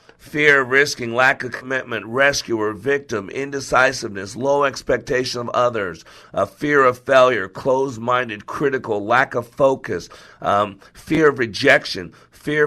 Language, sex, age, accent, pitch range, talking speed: English, male, 50-69, American, 120-150 Hz, 130 wpm